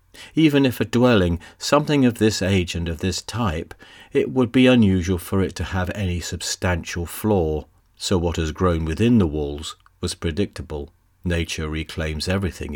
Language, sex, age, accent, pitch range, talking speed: English, male, 40-59, British, 85-105 Hz, 165 wpm